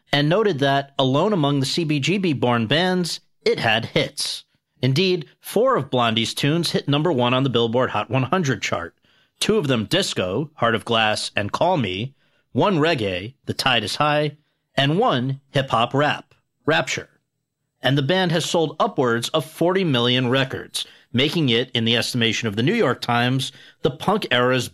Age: 40-59